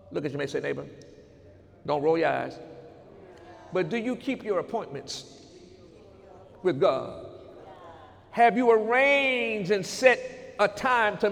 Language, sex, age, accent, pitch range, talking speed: English, male, 50-69, American, 200-255 Hz, 140 wpm